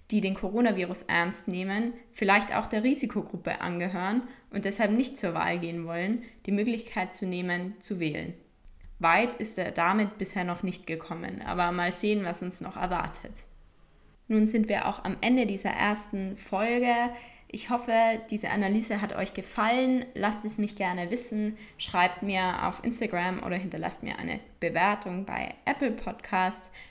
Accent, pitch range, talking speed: German, 180-225 Hz, 160 wpm